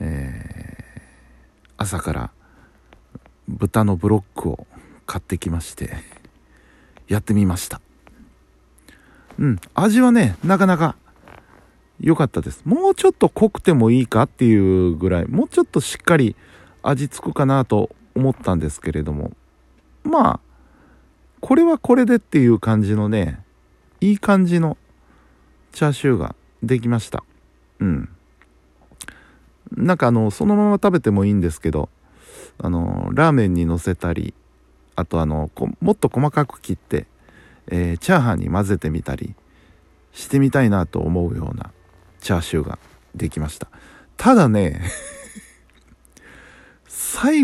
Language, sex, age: Japanese, male, 50-69